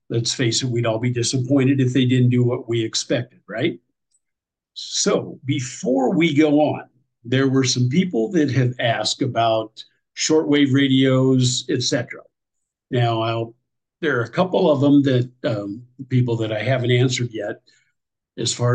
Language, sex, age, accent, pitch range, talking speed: English, male, 50-69, American, 120-145 Hz, 155 wpm